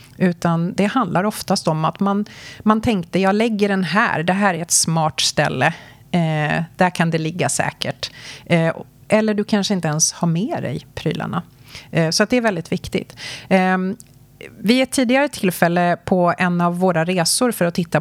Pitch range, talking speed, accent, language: 160-205 Hz, 185 wpm, native, Swedish